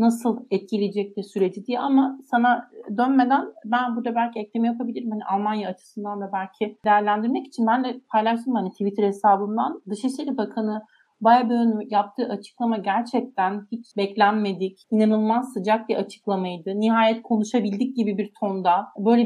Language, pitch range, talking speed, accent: Turkish, 200-240 Hz, 135 wpm, native